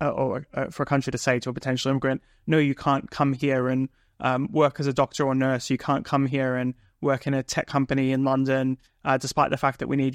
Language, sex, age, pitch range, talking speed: English, male, 20-39, 130-145 Hz, 260 wpm